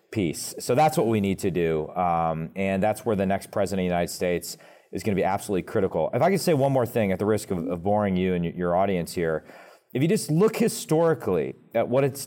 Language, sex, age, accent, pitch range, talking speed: English, male, 40-59, American, 90-125 Hz, 250 wpm